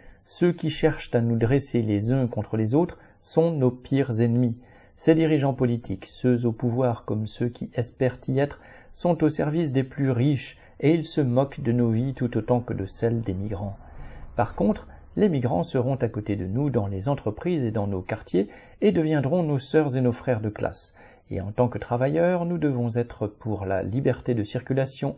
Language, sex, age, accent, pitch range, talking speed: French, male, 50-69, French, 110-140 Hz, 205 wpm